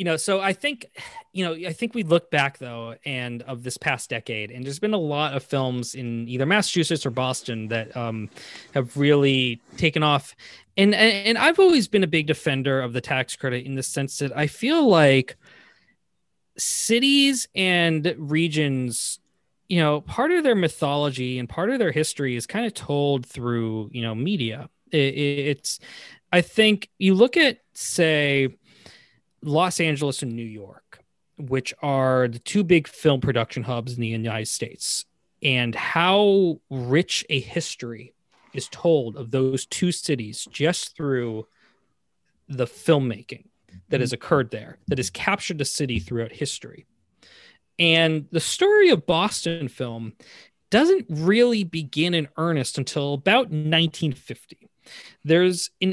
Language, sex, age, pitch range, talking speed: English, male, 20-39, 130-175 Hz, 150 wpm